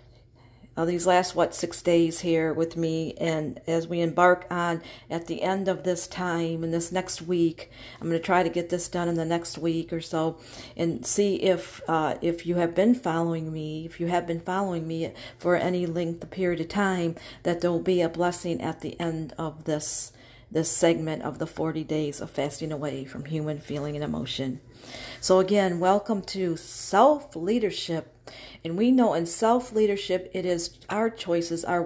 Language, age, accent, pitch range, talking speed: English, 50-69, American, 160-190 Hz, 190 wpm